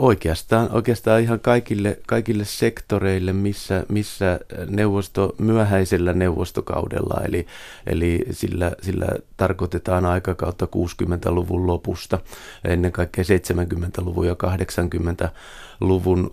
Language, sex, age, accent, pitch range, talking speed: Finnish, male, 30-49, native, 85-95 Hz, 90 wpm